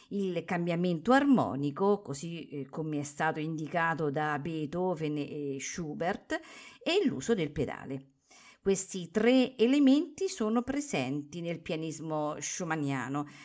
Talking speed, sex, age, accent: 105 wpm, female, 50-69, native